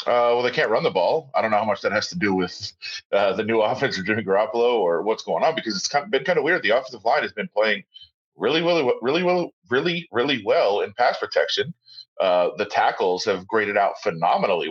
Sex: male